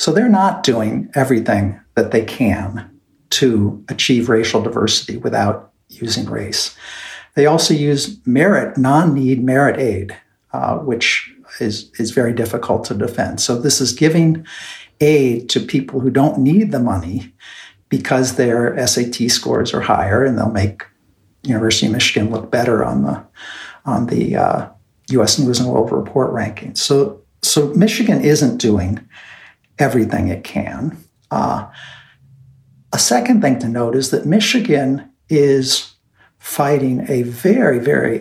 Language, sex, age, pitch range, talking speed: English, male, 60-79, 120-155 Hz, 140 wpm